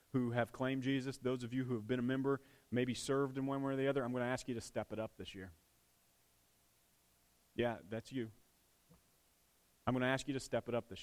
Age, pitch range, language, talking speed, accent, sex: 30-49, 110-150 Hz, English, 240 wpm, American, male